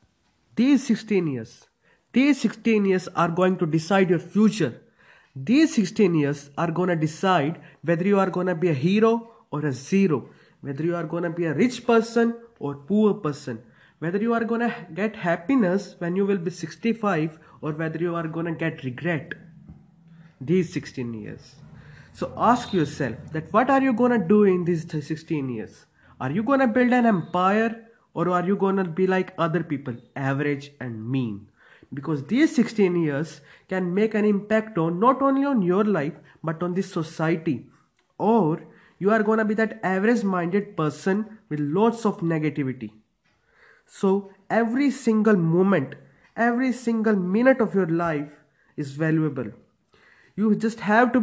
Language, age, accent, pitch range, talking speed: English, 20-39, Indian, 155-220 Hz, 170 wpm